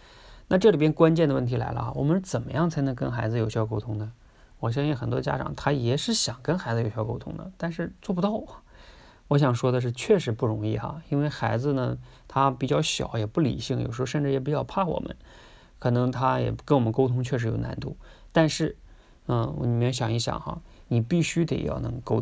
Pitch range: 115-150 Hz